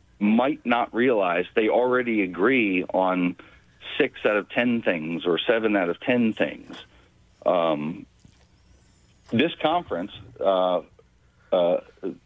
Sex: male